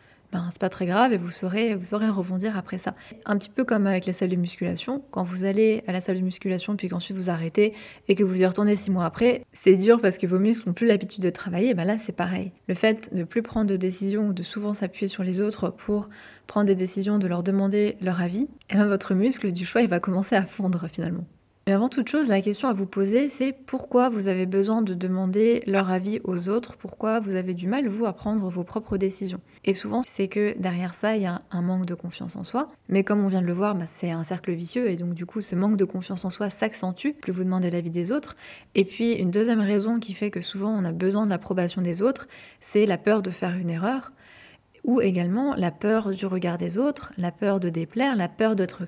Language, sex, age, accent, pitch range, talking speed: French, female, 20-39, French, 185-220 Hz, 255 wpm